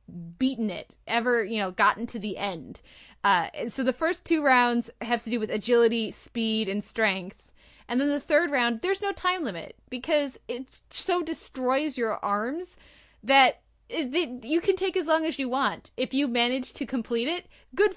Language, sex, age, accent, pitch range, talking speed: English, female, 10-29, American, 215-270 Hz, 185 wpm